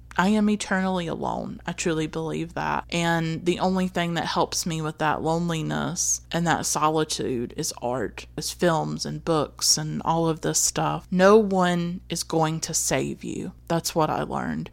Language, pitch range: English, 150-175 Hz